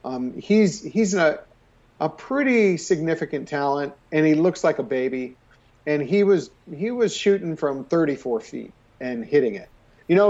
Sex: male